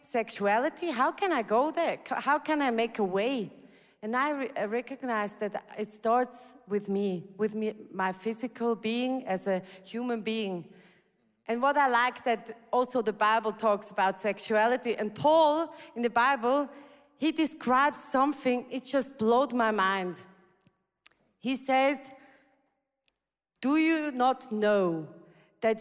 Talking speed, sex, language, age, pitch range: 140 wpm, female, German, 30-49, 215-285 Hz